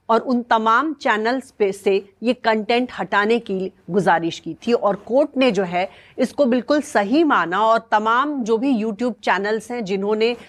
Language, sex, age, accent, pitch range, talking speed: English, female, 40-59, Indian, 195-250 Hz, 170 wpm